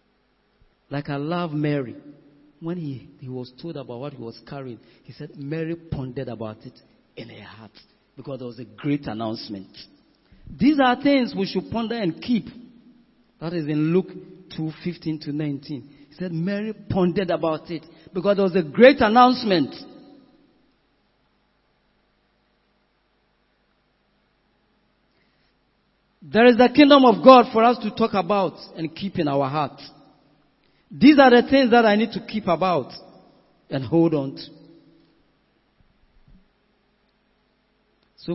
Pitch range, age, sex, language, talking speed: 155-220 Hz, 40-59, male, English, 140 wpm